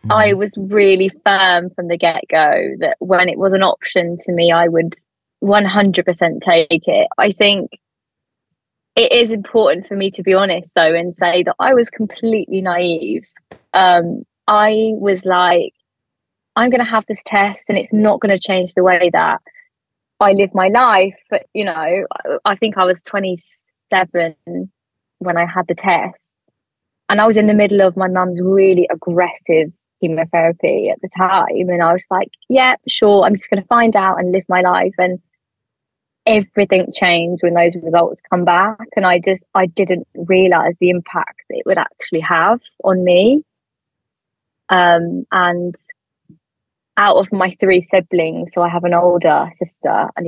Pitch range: 170-200 Hz